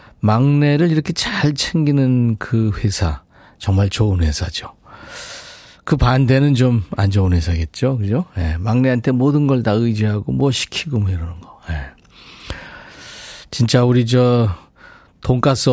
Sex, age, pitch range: male, 40-59, 100-135 Hz